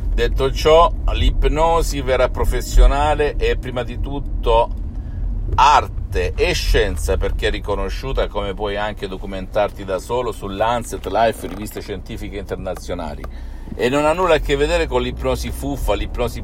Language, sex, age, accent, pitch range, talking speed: Italian, male, 50-69, native, 75-115 Hz, 135 wpm